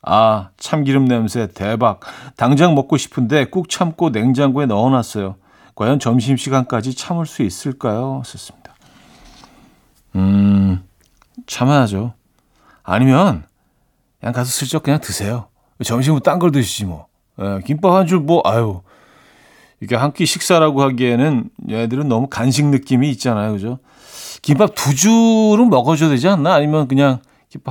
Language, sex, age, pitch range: Korean, male, 40-59, 110-150 Hz